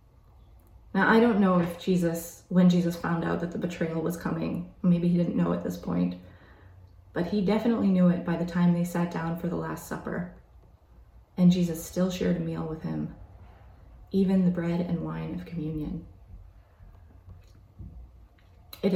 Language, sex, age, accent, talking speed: English, female, 20-39, American, 170 wpm